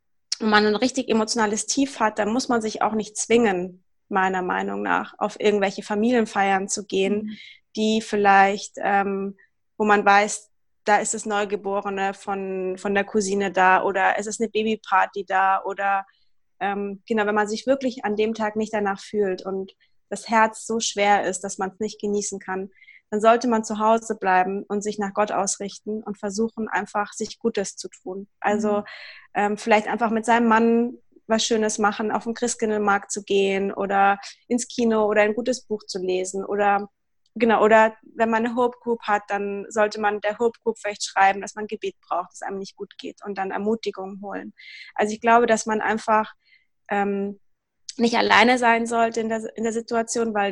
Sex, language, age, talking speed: female, German, 20-39, 185 wpm